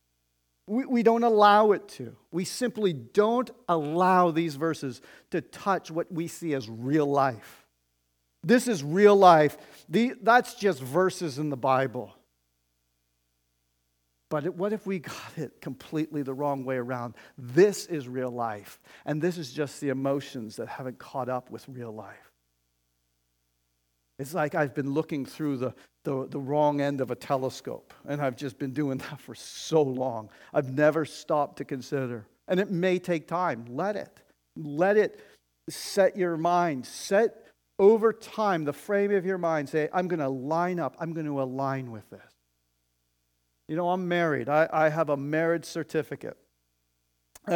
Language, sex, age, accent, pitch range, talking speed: English, male, 50-69, American, 115-175 Hz, 165 wpm